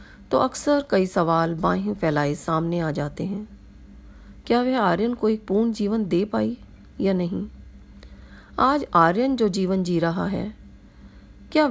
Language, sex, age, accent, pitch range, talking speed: Hindi, female, 40-59, native, 170-220 Hz, 150 wpm